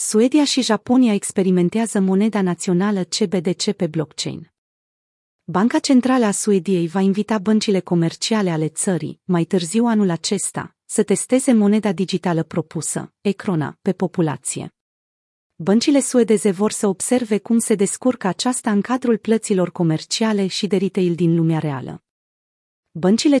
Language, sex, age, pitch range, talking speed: Romanian, female, 30-49, 175-215 Hz, 130 wpm